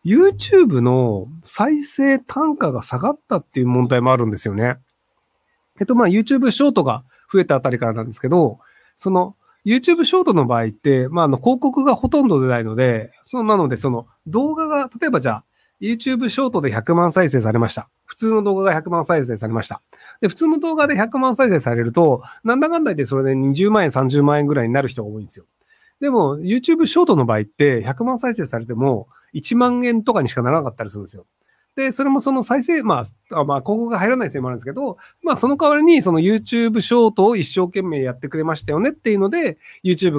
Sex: male